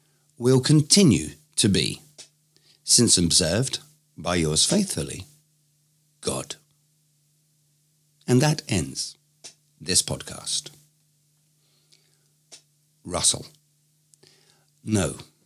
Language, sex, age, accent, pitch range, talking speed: English, male, 50-69, British, 115-150 Hz, 65 wpm